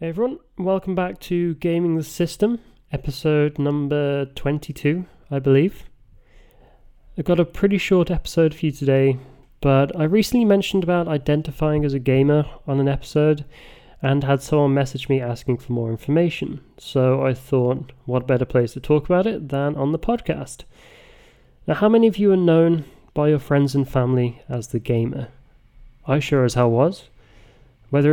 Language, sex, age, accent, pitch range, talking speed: English, male, 30-49, British, 130-160 Hz, 165 wpm